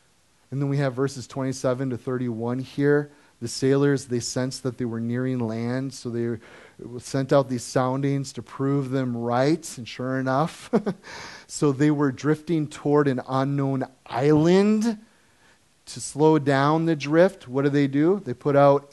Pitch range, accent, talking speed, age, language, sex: 125-165 Hz, American, 160 wpm, 30-49, English, male